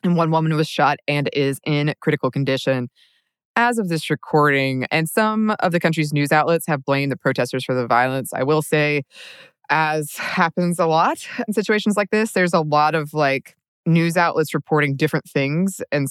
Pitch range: 140-175 Hz